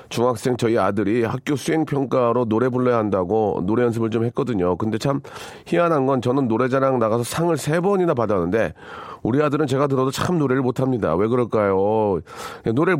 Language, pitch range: Korean, 110-140 Hz